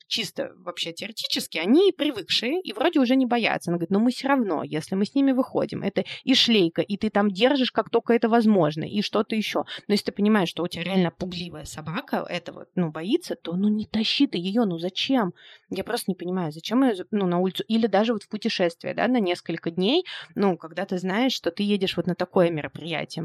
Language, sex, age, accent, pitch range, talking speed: Russian, female, 20-39, native, 185-250 Hz, 225 wpm